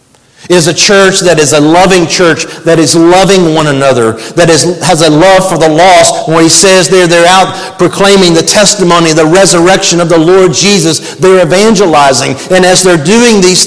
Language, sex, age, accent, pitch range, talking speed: English, male, 50-69, American, 175-225 Hz, 195 wpm